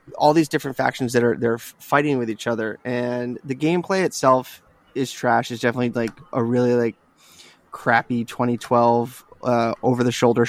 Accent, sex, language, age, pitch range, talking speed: American, male, English, 20-39, 115-130 Hz, 155 wpm